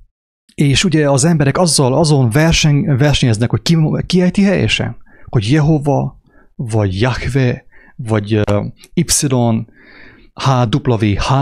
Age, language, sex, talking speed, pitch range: 30-49, English, male, 100 wpm, 120-165 Hz